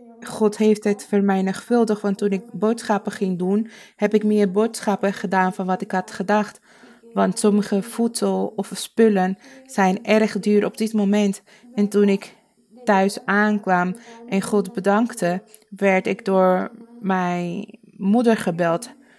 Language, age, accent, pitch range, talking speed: Dutch, 20-39, Dutch, 190-225 Hz, 140 wpm